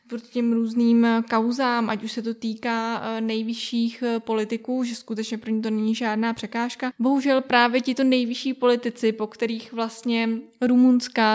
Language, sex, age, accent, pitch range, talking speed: Czech, female, 20-39, native, 220-250 Hz, 155 wpm